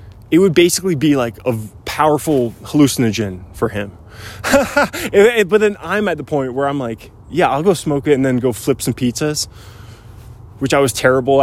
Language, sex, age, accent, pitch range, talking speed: English, male, 20-39, American, 110-155 Hz, 180 wpm